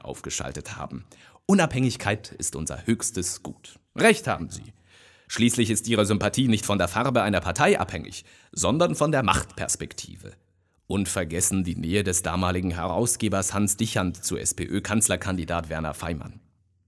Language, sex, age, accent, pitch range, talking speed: German, male, 30-49, German, 95-135 Hz, 135 wpm